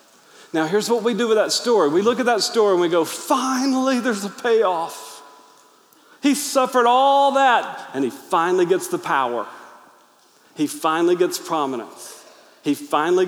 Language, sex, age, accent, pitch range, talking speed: English, male, 40-59, American, 200-315 Hz, 165 wpm